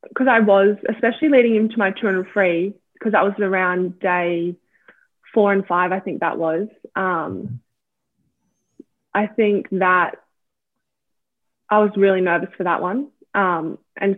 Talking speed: 140 wpm